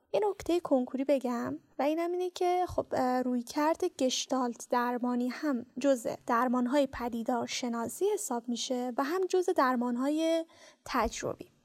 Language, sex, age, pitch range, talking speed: Persian, female, 10-29, 255-340 Hz, 130 wpm